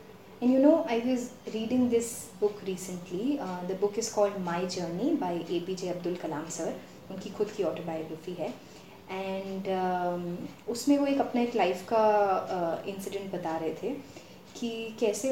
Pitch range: 185-245 Hz